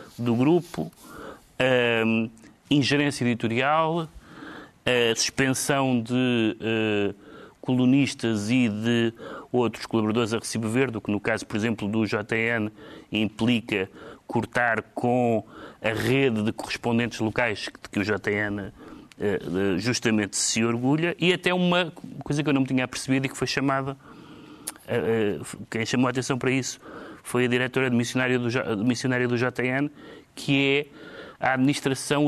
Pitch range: 115-140 Hz